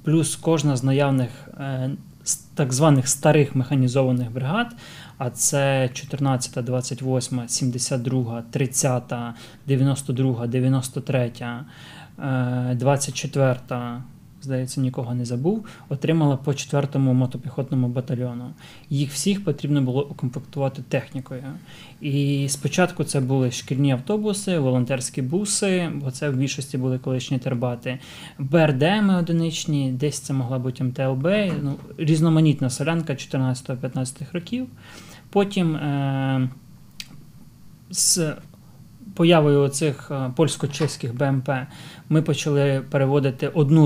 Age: 20-39